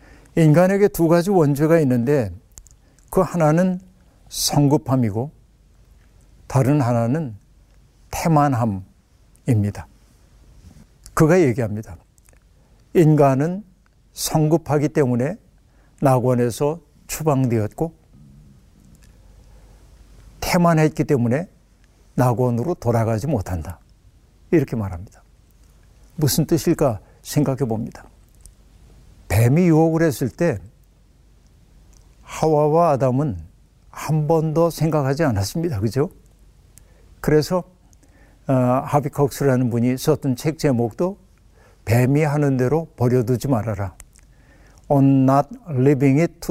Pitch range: 115-160 Hz